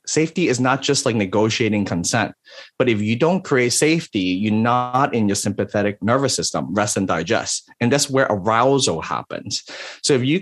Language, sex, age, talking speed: English, male, 30-49, 180 wpm